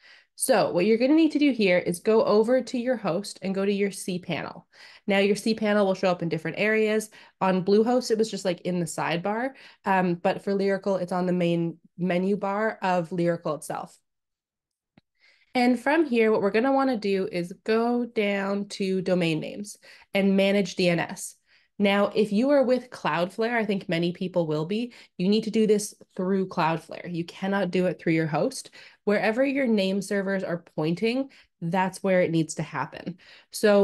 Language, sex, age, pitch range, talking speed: English, female, 20-39, 175-215 Hz, 190 wpm